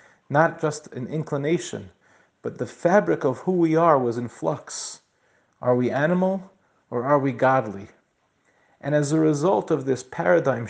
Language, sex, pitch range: English, male, 125-155 Hz